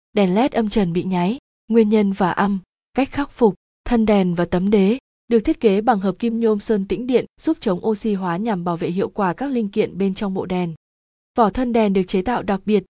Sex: female